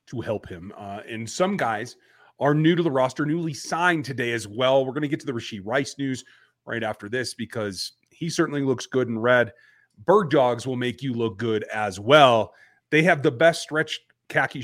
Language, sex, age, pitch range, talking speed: English, male, 30-49, 115-155 Hz, 210 wpm